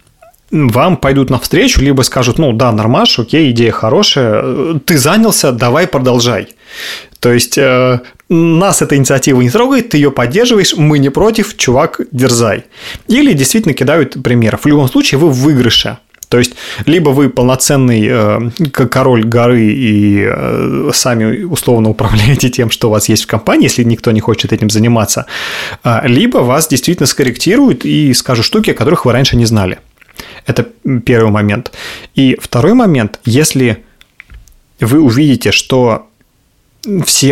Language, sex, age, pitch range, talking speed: Russian, male, 30-49, 115-150 Hz, 140 wpm